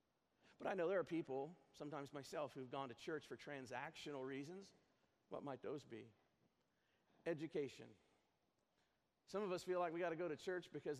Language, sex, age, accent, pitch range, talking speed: English, male, 50-69, American, 125-155 Hz, 175 wpm